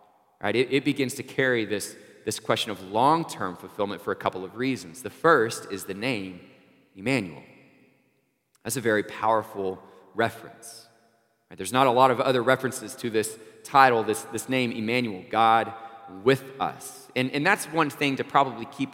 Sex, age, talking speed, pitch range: male, 30-49, 170 wpm, 105-135 Hz